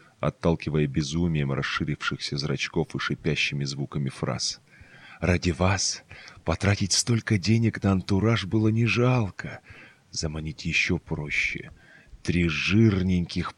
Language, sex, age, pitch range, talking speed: Russian, male, 30-49, 80-105 Hz, 100 wpm